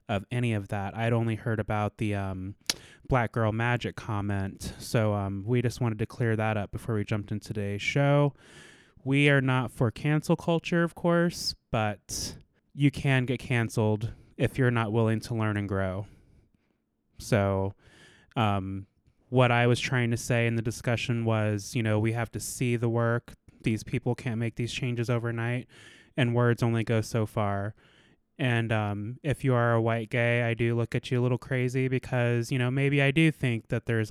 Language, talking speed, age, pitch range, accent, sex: English, 190 wpm, 20-39, 110-125 Hz, American, male